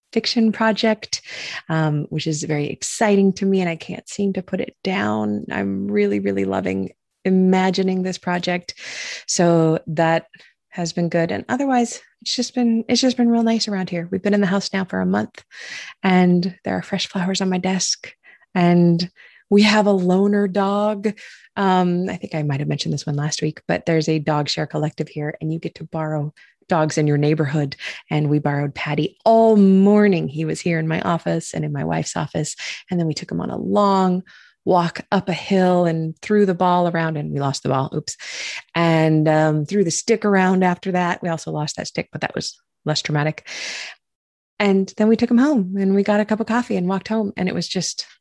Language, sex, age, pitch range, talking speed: English, female, 20-39, 155-200 Hz, 210 wpm